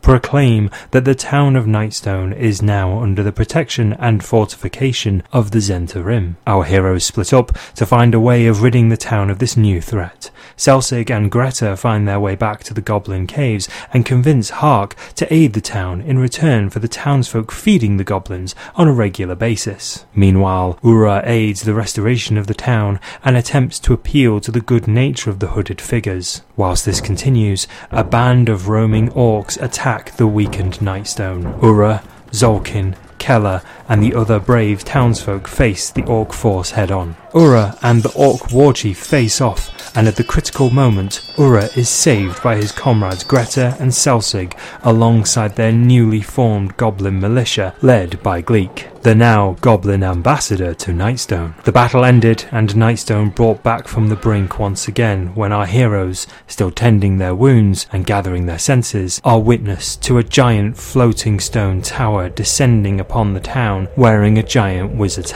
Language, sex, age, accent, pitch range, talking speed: English, male, 30-49, British, 100-120 Hz, 170 wpm